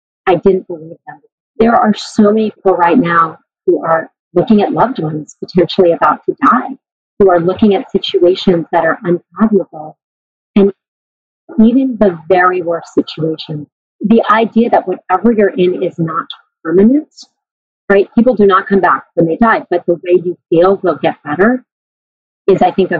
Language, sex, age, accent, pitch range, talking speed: English, female, 40-59, American, 170-225 Hz, 170 wpm